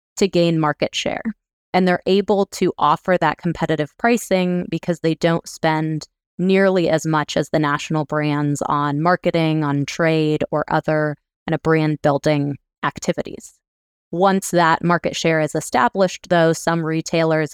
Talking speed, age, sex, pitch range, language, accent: 145 wpm, 20-39, female, 150-175 Hz, English, American